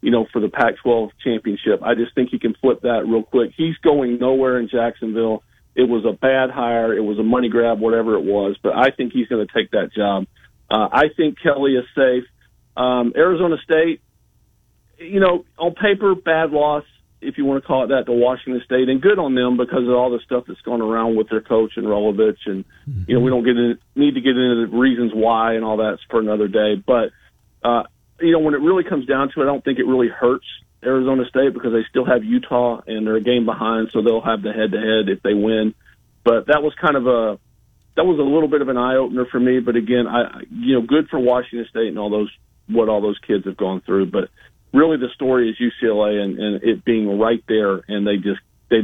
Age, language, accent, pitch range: 50-69, English, American, 110-130 Hz